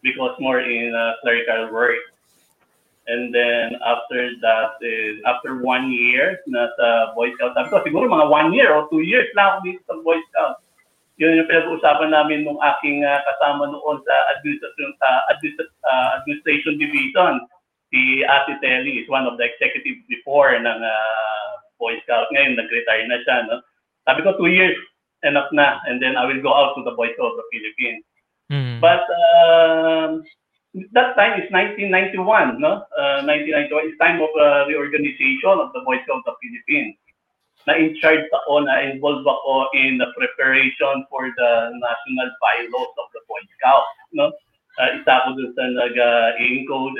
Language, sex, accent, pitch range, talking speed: English, male, Filipino, 125-205 Hz, 170 wpm